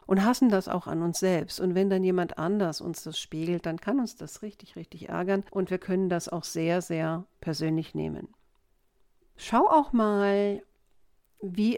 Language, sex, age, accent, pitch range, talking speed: German, female, 50-69, German, 155-190 Hz, 180 wpm